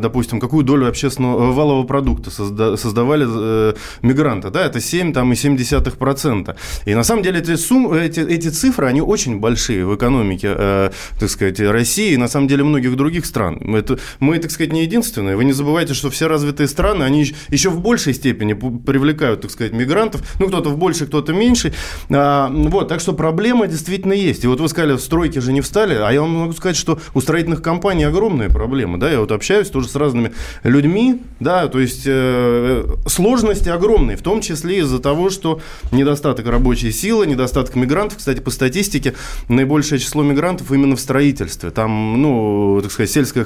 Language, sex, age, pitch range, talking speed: Russian, male, 20-39, 120-160 Hz, 180 wpm